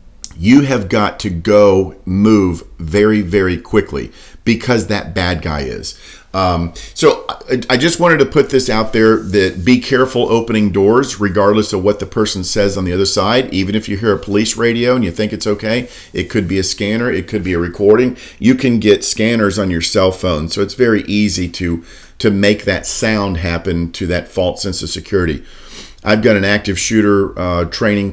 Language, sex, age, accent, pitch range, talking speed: English, male, 50-69, American, 90-110 Hz, 200 wpm